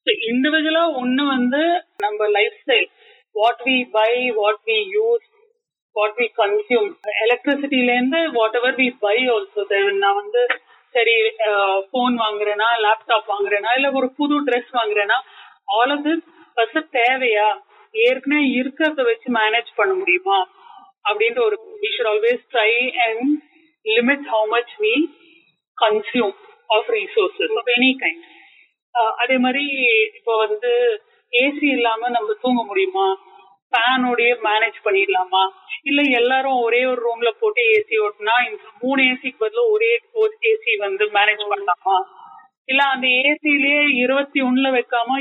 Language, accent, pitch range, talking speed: Tamil, native, 225-375 Hz, 85 wpm